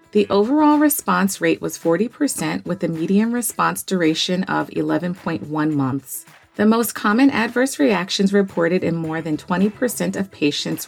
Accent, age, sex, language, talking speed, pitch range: American, 30-49, female, English, 145 wpm, 170-220 Hz